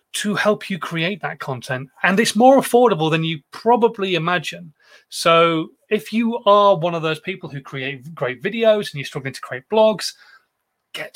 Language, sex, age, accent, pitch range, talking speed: English, male, 30-49, British, 145-190 Hz, 175 wpm